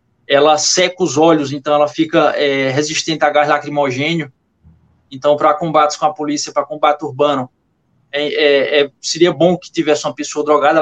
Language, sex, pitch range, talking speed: Portuguese, male, 145-185 Hz, 165 wpm